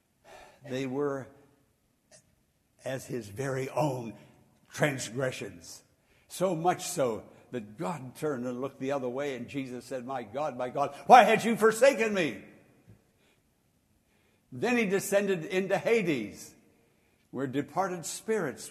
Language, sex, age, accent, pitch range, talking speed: English, male, 60-79, American, 115-175 Hz, 120 wpm